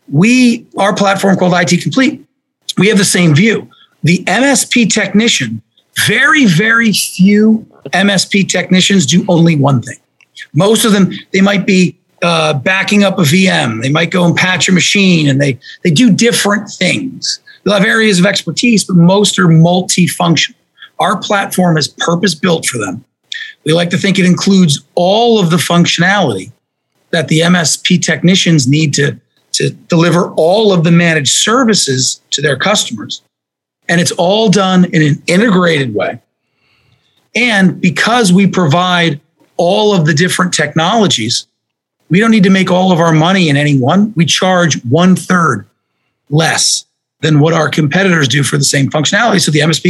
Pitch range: 165-205 Hz